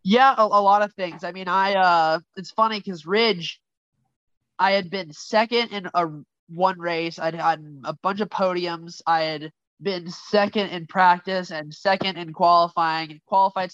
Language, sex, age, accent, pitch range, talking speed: English, male, 20-39, American, 155-190 Hz, 175 wpm